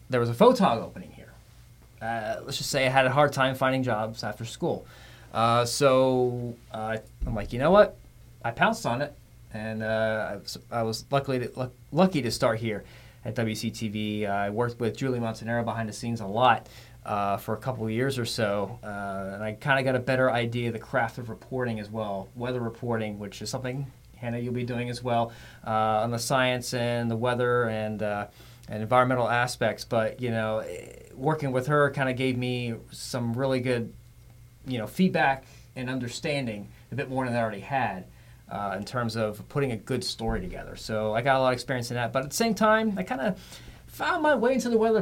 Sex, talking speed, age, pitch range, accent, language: male, 210 wpm, 30-49, 115-130 Hz, American, English